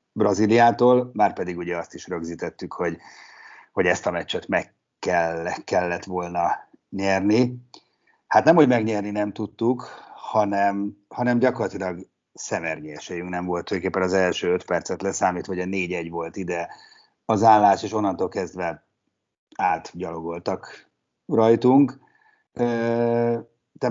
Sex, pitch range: male, 95-120 Hz